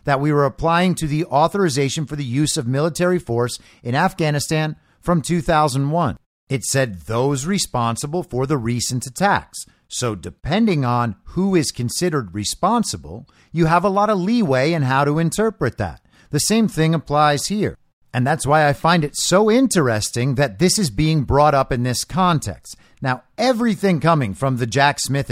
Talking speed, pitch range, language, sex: 170 wpm, 125-175 Hz, English, male